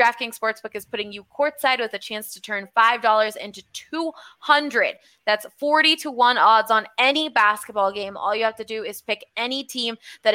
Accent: American